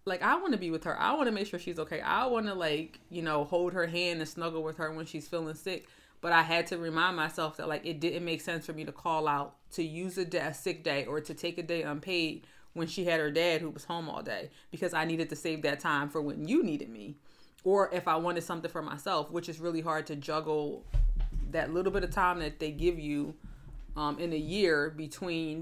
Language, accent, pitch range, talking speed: English, American, 150-175 Hz, 255 wpm